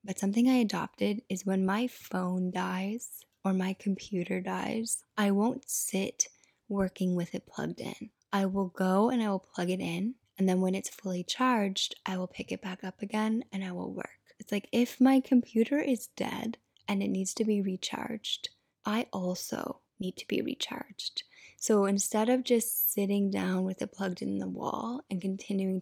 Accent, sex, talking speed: American, female, 185 wpm